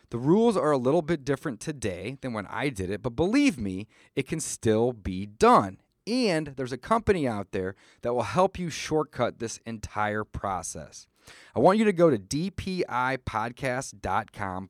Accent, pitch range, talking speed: American, 110-160 Hz, 170 wpm